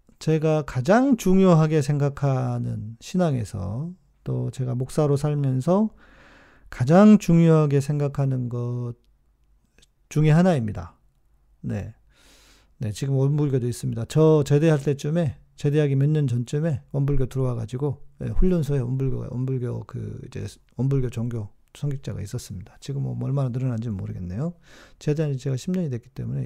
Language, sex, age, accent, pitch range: Korean, male, 40-59, native, 125-160 Hz